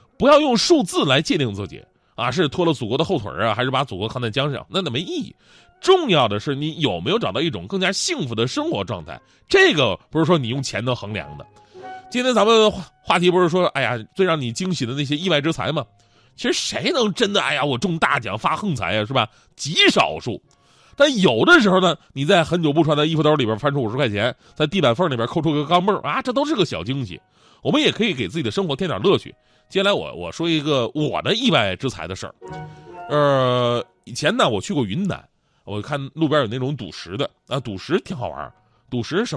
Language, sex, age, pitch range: Chinese, male, 30-49, 125-200 Hz